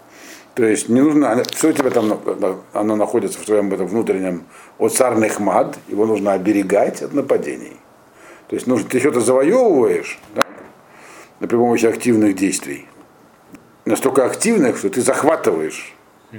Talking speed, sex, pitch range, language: 130 wpm, male, 105-150 Hz, Russian